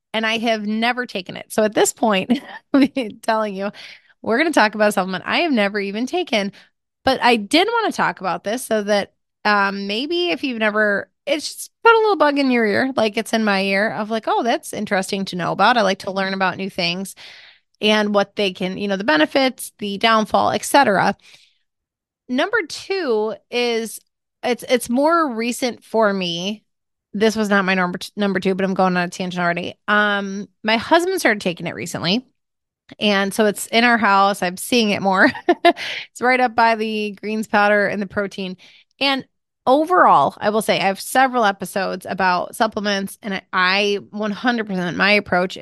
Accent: American